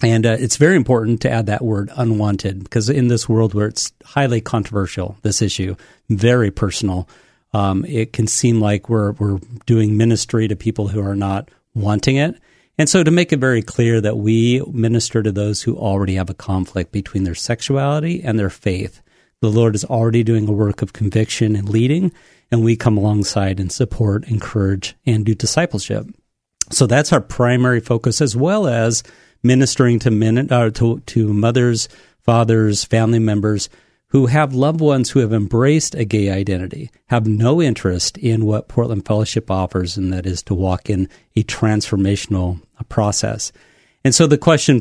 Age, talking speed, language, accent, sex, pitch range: 40-59, 175 wpm, English, American, male, 105-125 Hz